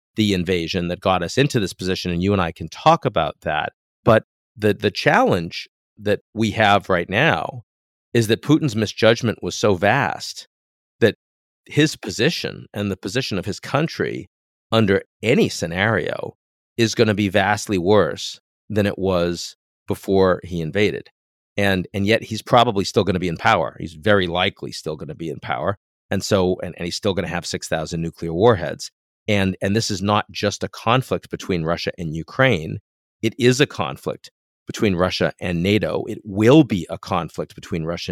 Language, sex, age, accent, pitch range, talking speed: English, male, 50-69, American, 85-110 Hz, 180 wpm